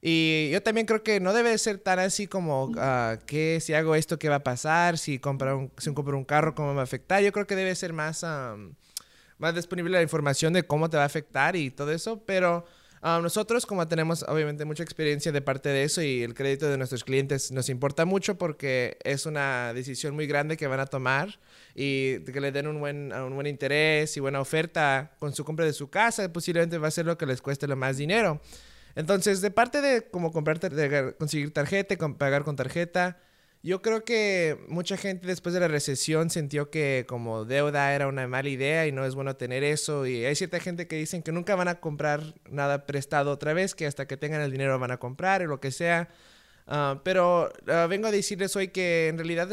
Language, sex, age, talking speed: English, male, 20-39, 225 wpm